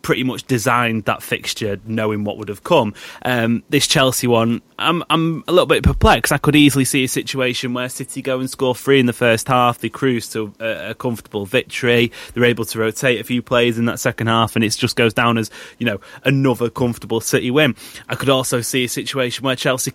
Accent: British